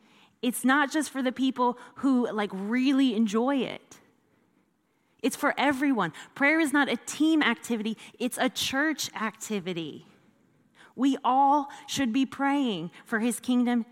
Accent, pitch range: American, 215-275 Hz